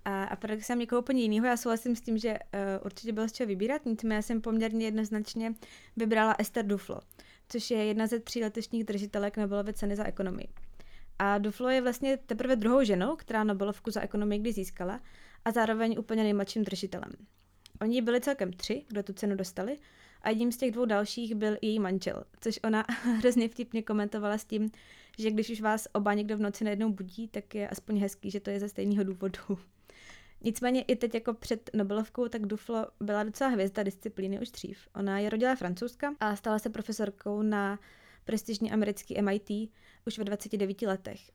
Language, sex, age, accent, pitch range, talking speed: Czech, female, 20-39, native, 200-230 Hz, 185 wpm